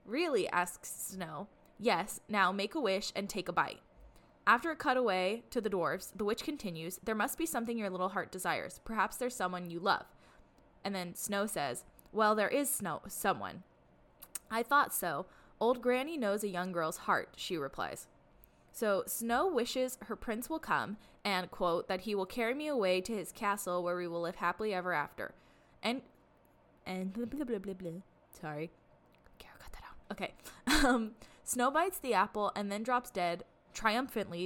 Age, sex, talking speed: 10-29, female, 165 wpm